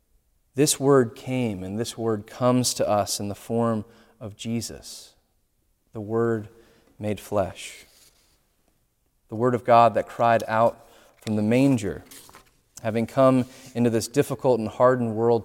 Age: 30-49